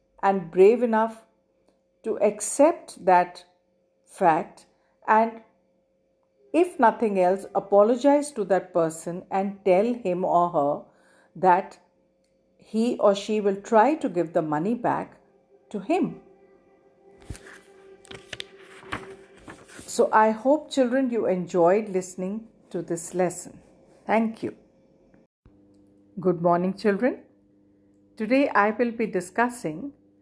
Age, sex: 50-69, female